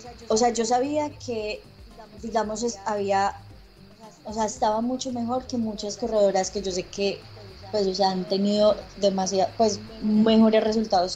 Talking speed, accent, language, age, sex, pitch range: 145 wpm, Colombian, Spanish, 20-39, female, 185-210 Hz